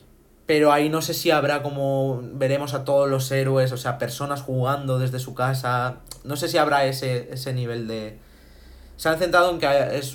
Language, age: Spanish, 30-49